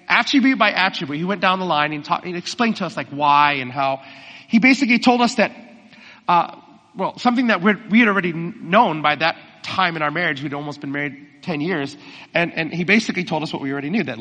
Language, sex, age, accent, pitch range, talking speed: English, male, 30-49, American, 150-220 Hz, 230 wpm